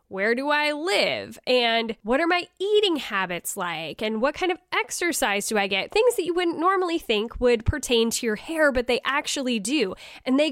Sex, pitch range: female, 225-290 Hz